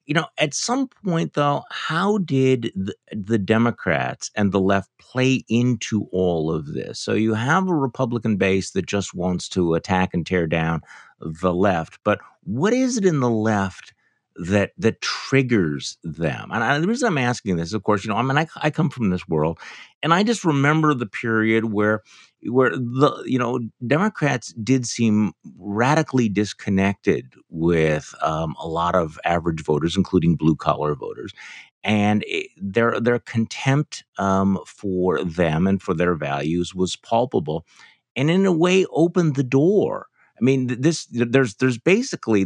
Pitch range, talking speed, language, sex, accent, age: 95-135 Hz, 165 wpm, English, male, American, 50-69